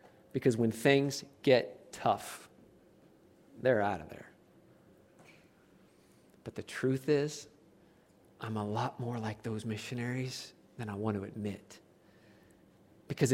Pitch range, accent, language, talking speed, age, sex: 135-190 Hz, American, English, 115 wpm, 40-59, male